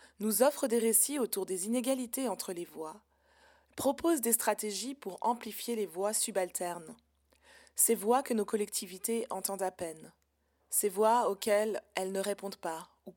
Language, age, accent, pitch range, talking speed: French, 20-39, French, 190-230 Hz, 155 wpm